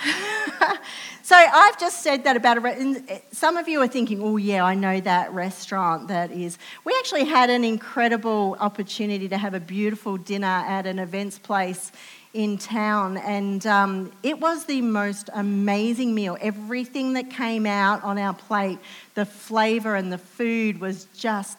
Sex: female